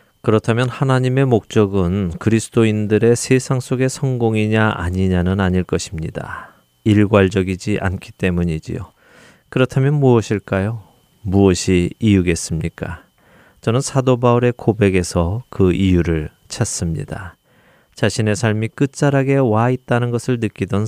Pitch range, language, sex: 90-120 Hz, Korean, male